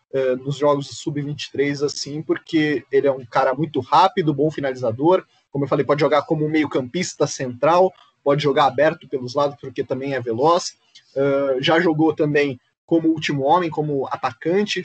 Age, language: 20-39, Portuguese